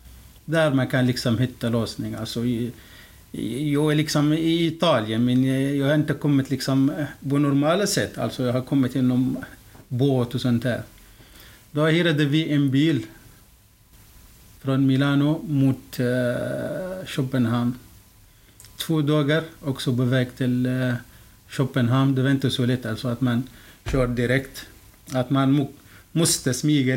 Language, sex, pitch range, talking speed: Swedish, male, 120-145 Hz, 140 wpm